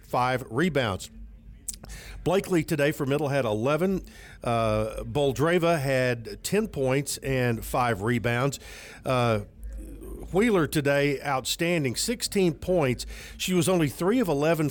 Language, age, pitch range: English, 50-69, 120-155 Hz